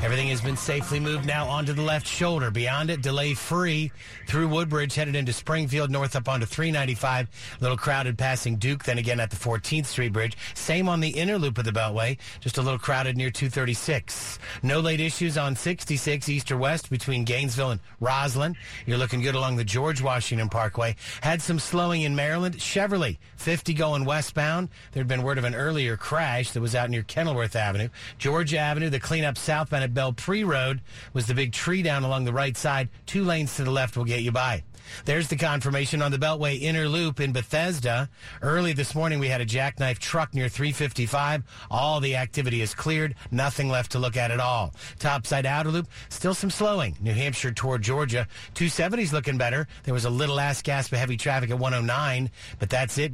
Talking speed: 200 wpm